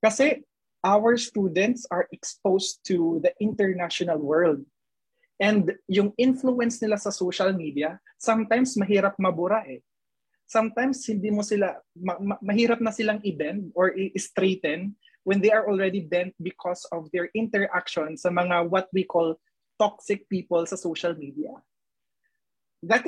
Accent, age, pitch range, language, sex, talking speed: native, 20-39, 180-225 Hz, Filipino, male, 135 wpm